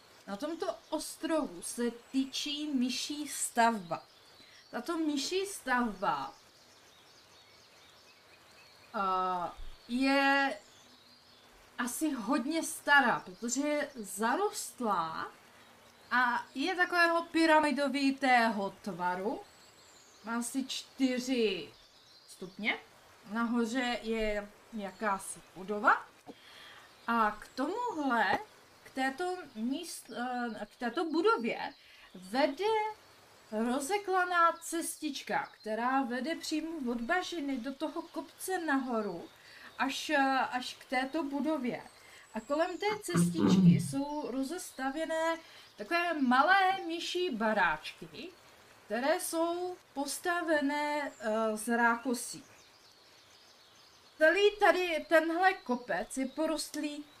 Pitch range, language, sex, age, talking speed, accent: 235-320 Hz, Czech, female, 20-39, 80 wpm, native